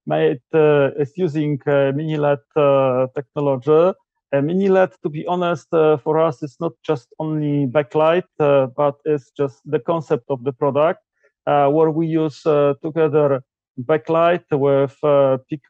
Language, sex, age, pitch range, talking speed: English, male, 40-59, 140-160 Hz, 165 wpm